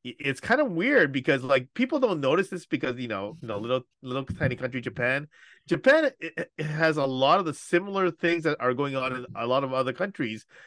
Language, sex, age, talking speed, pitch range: English, male, 30-49, 230 wpm, 125-165 Hz